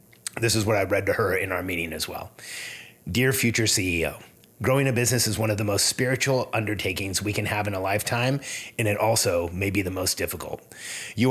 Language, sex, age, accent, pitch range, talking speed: English, male, 30-49, American, 105-130 Hz, 210 wpm